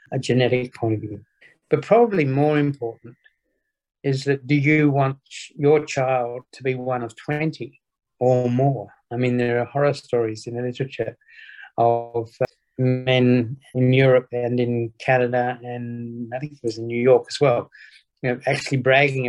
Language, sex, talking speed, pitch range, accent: English, male, 170 wpm, 120-135 Hz, British